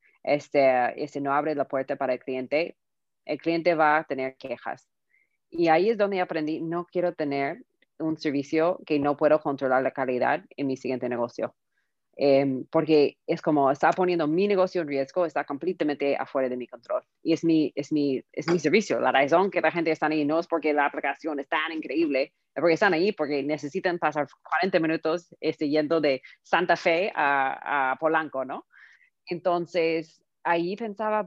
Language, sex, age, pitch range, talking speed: Spanish, female, 30-49, 145-180 Hz, 180 wpm